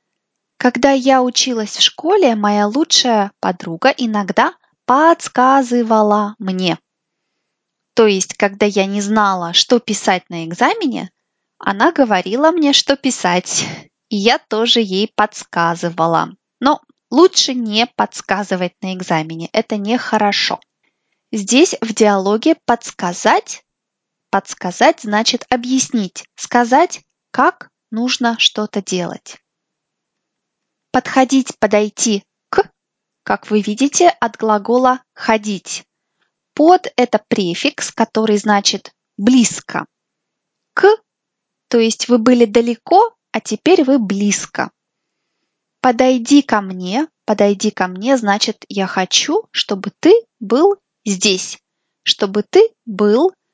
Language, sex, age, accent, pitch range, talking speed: Russian, female, 20-39, native, 205-265 Hz, 105 wpm